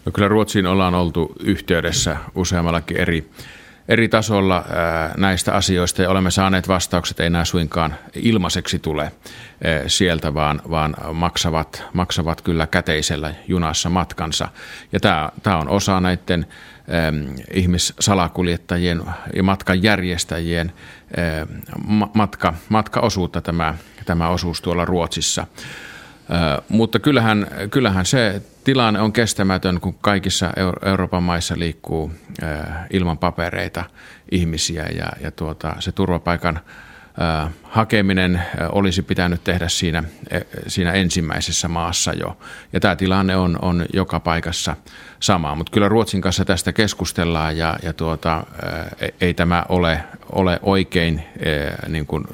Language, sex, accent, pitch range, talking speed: Finnish, male, native, 85-95 Hz, 110 wpm